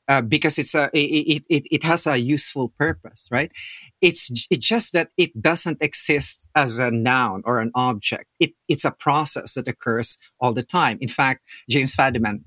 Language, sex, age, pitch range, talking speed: English, male, 50-69, 120-145 Hz, 185 wpm